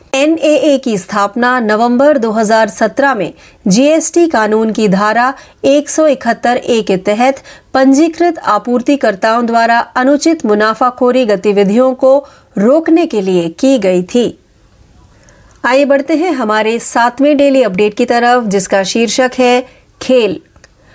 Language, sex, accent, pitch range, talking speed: Marathi, female, native, 215-275 Hz, 110 wpm